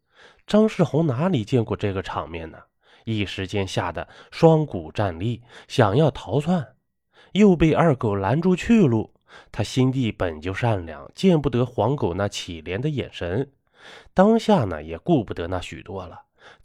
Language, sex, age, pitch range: Chinese, male, 20-39, 100-155 Hz